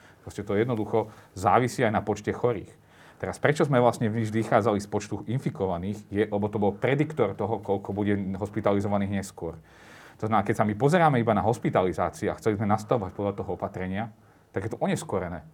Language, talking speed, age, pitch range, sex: Slovak, 175 wpm, 40-59, 100-115 Hz, male